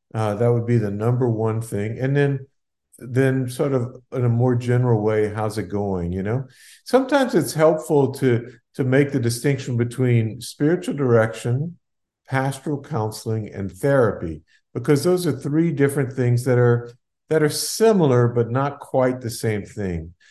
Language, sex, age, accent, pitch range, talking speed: English, male, 50-69, American, 110-135 Hz, 165 wpm